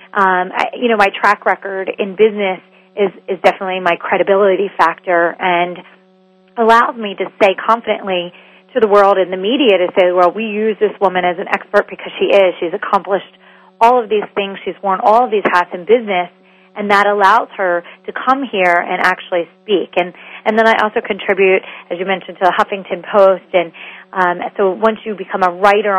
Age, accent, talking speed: 30-49, American, 195 wpm